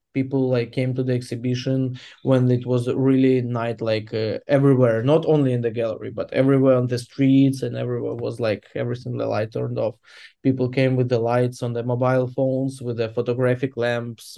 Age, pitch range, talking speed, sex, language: 20-39, 120-130 Hz, 190 wpm, male, English